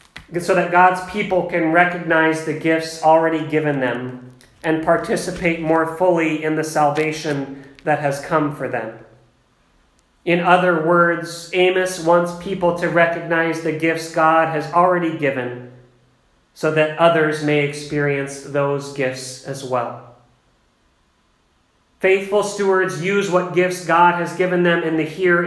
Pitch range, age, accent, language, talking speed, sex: 140-170 Hz, 40-59, American, English, 135 wpm, male